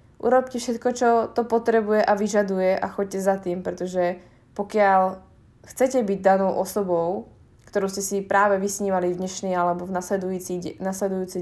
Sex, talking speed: female, 145 wpm